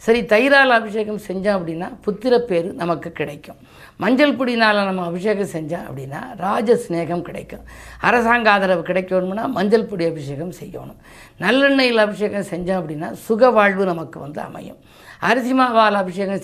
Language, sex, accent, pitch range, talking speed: Tamil, female, native, 175-220 Hz, 130 wpm